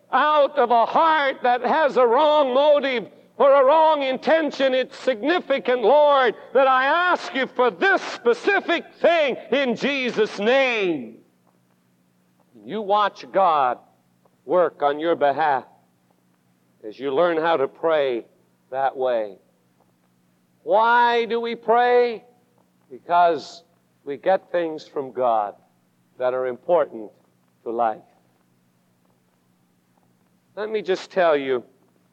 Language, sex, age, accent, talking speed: English, male, 60-79, American, 115 wpm